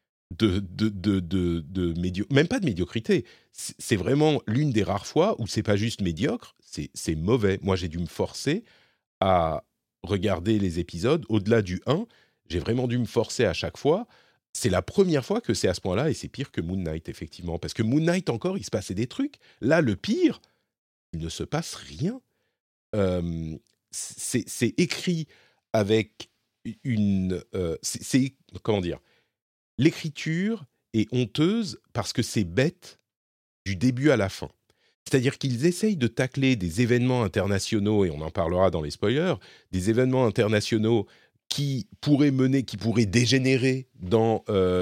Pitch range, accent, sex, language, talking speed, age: 95-135 Hz, French, male, French, 170 wpm, 40-59